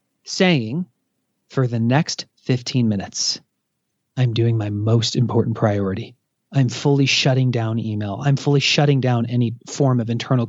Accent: American